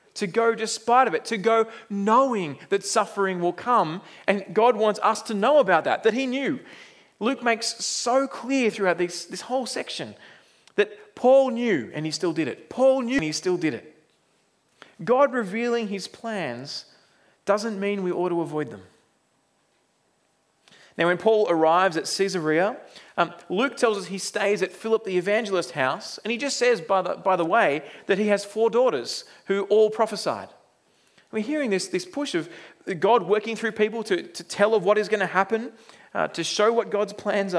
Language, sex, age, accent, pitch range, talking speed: English, male, 30-49, Australian, 180-235 Hz, 185 wpm